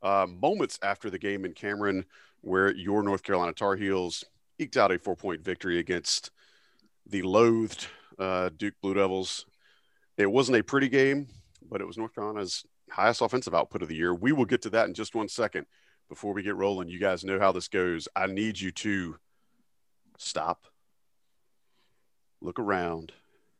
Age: 40-59